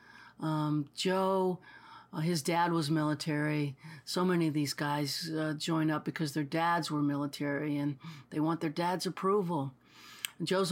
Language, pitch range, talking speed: English, 145-175 Hz, 155 wpm